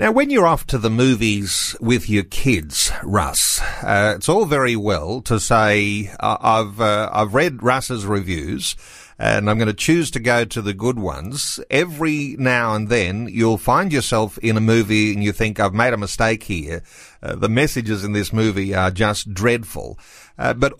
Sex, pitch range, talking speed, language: male, 110-135 Hz, 185 wpm, English